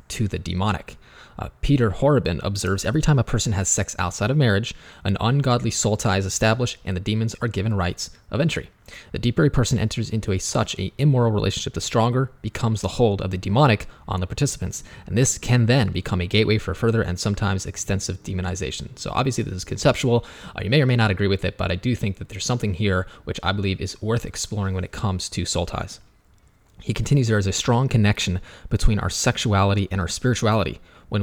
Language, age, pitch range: English, 20-39, 95-120 Hz